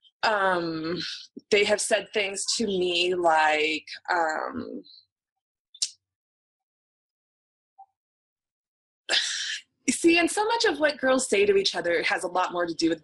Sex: female